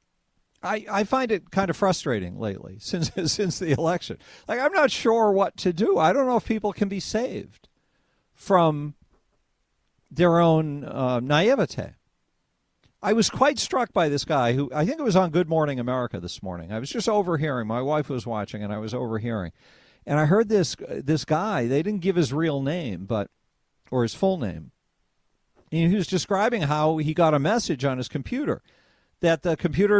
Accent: American